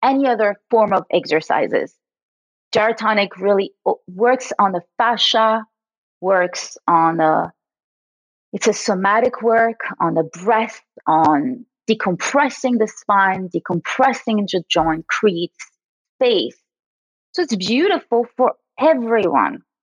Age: 30-49